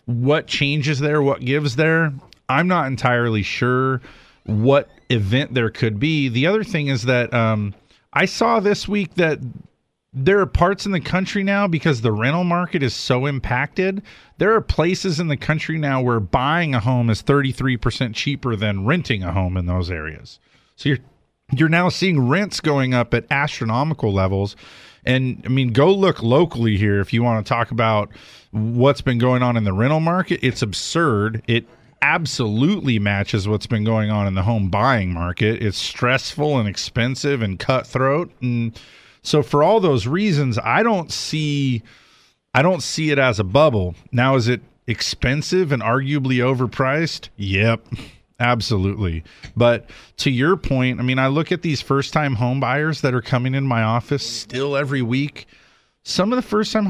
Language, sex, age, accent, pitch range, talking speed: English, male, 40-59, American, 115-160 Hz, 170 wpm